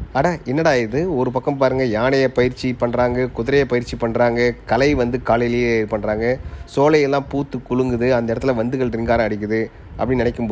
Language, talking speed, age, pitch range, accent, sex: Tamil, 150 wpm, 30-49, 110-140 Hz, native, male